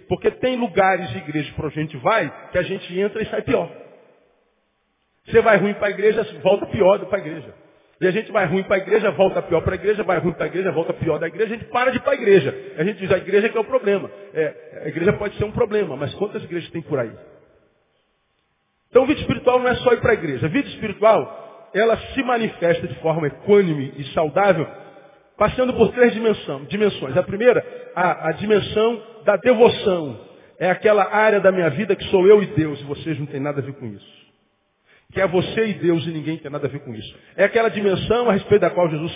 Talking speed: 235 wpm